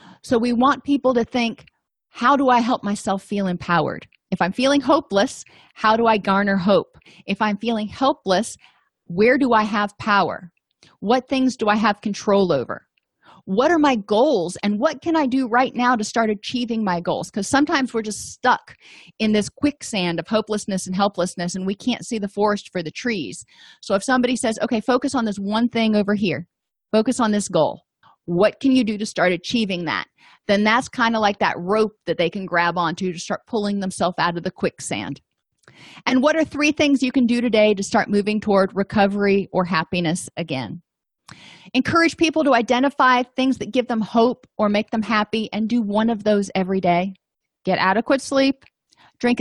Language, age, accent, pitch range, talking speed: English, 30-49, American, 195-250 Hz, 195 wpm